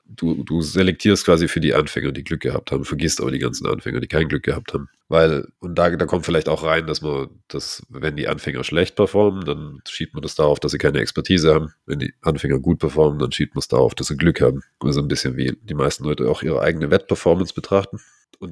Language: English